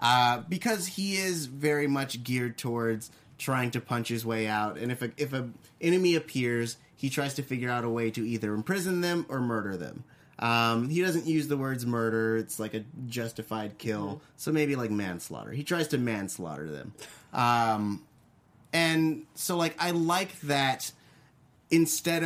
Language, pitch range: English, 115-155 Hz